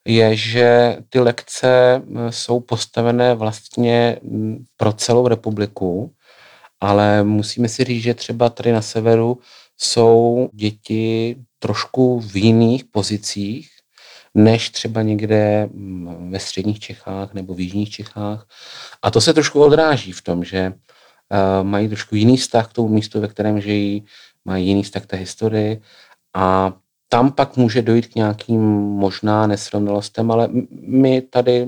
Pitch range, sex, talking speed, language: 95-115 Hz, male, 135 wpm, Czech